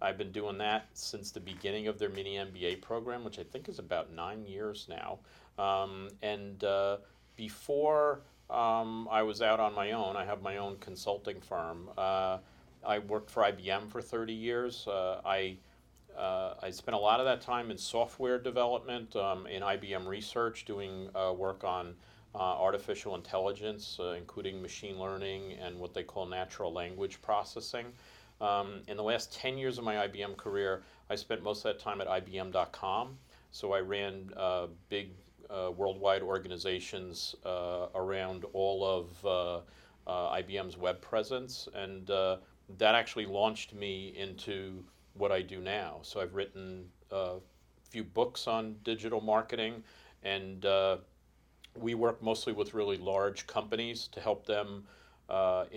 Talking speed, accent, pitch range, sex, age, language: 160 wpm, American, 95-110 Hz, male, 40-59, English